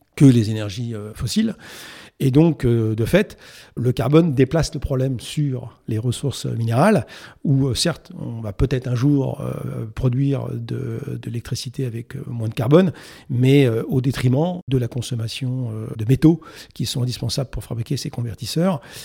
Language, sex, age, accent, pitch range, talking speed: French, male, 50-69, French, 120-140 Hz, 150 wpm